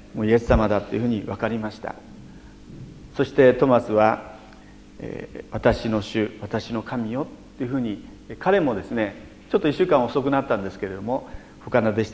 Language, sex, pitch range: Japanese, male, 110-150 Hz